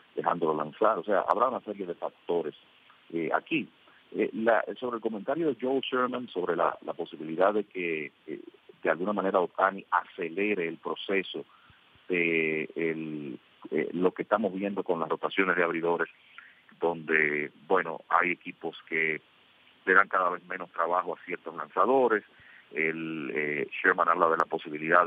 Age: 40-59